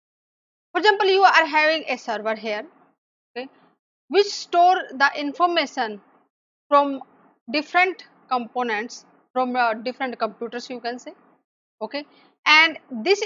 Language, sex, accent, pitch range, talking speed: English, female, Indian, 245-325 Hz, 120 wpm